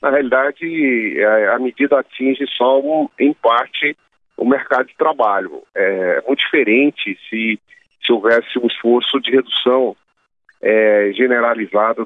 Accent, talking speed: Brazilian, 115 wpm